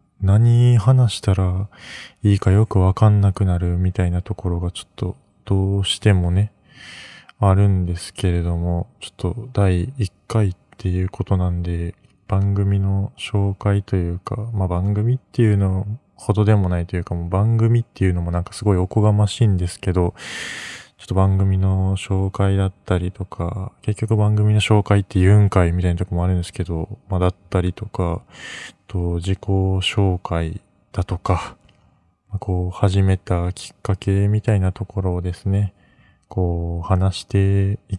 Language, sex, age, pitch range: Japanese, male, 20-39, 90-105 Hz